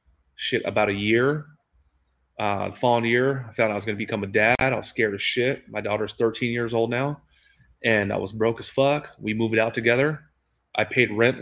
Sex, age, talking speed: male, 30-49, 210 wpm